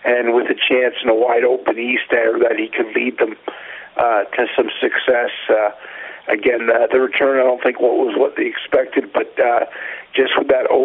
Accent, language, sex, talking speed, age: American, English, male, 205 wpm, 50-69